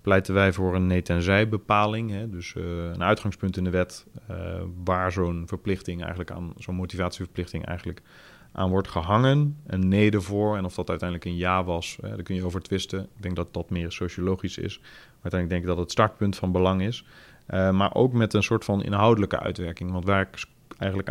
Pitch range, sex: 90-105 Hz, male